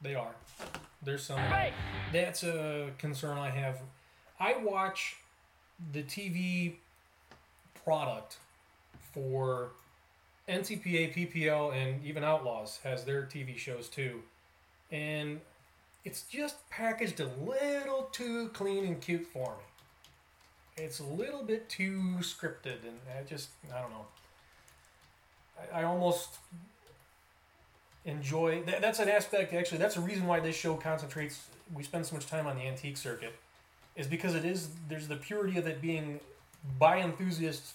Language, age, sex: English, 30-49, male